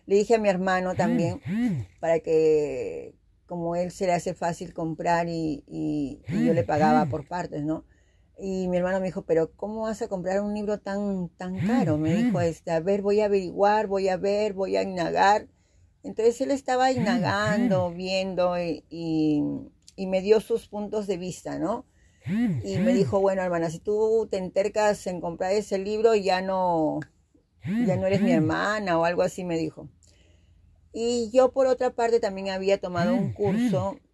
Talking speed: 180 wpm